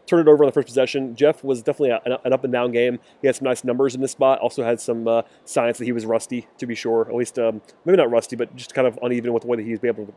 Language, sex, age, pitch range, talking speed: English, male, 30-49, 115-130 Hz, 315 wpm